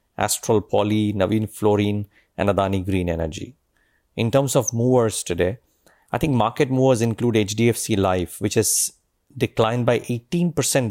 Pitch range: 100-115 Hz